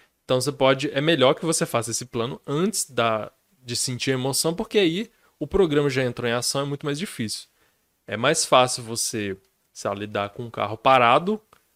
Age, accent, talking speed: 20-39, Brazilian, 195 wpm